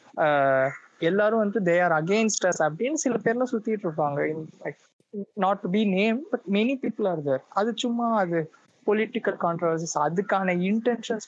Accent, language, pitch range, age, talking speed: native, Tamil, 170-220 Hz, 20-39, 90 wpm